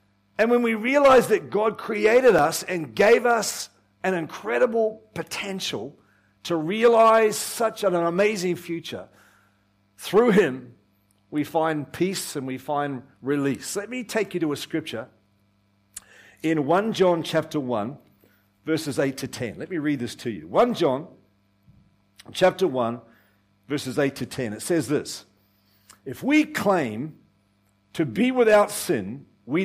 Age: 50-69